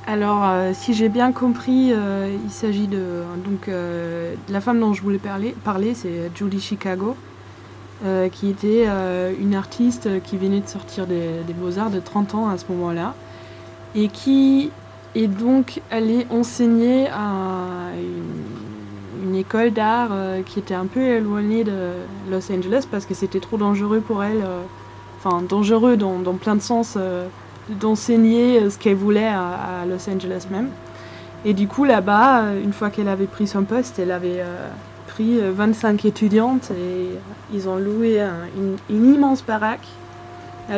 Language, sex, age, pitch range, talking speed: French, female, 20-39, 180-220 Hz, 165 wpm